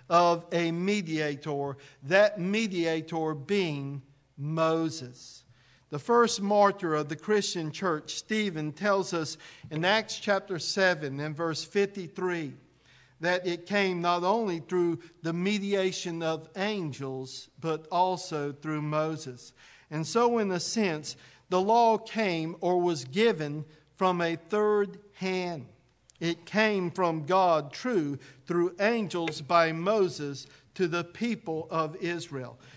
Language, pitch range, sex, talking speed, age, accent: English, 150-200 Hz, male, 125 wpm, 50-69, American